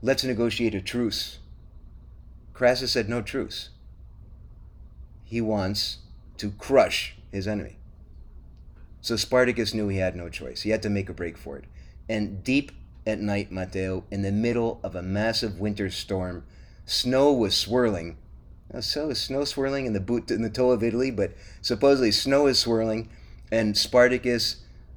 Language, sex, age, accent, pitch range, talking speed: English, male, 30-49, American, 95-115 Hz, 155 wpm